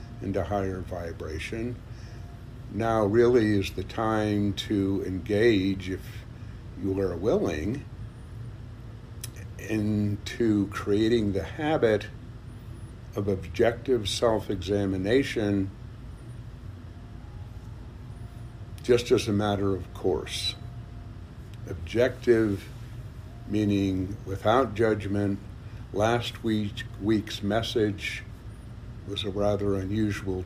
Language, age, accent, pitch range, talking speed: English, 60-79, American, 100-115 Hz, 80 wpm